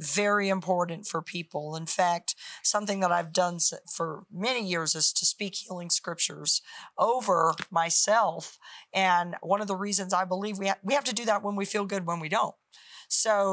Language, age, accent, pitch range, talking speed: English, 40-59, American, 175-215 Hz, 180 wpm